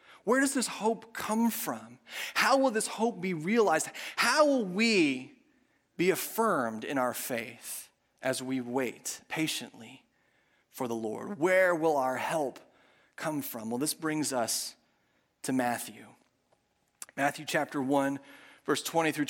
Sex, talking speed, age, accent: male, 140 wpm, 30-49, American